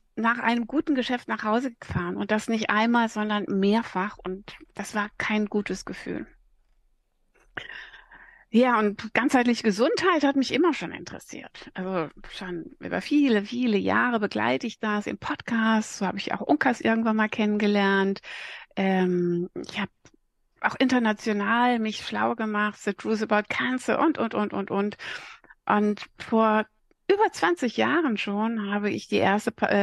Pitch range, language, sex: 200-245 Hz, German, female